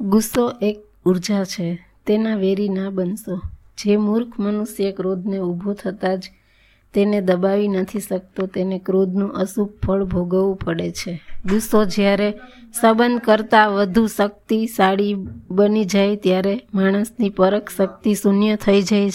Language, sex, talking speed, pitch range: Gujarati, female, 130 wpm, 185-210 Hz